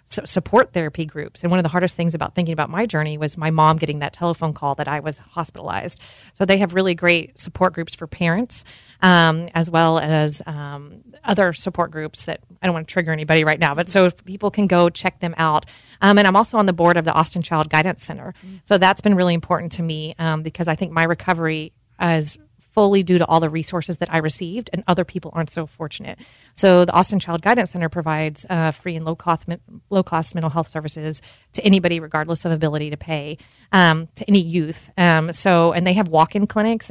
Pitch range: 160-185 Hz